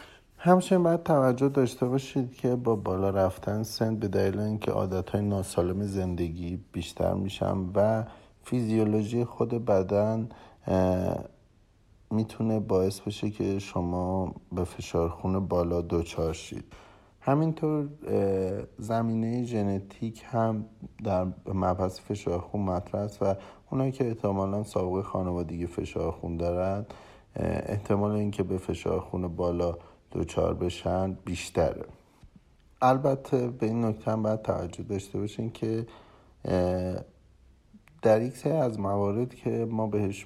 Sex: male